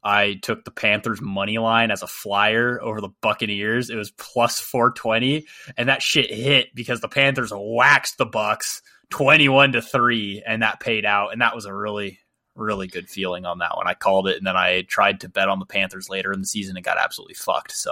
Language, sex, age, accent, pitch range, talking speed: English, male, 20-39, American, 100-125 Hz, 220 wpm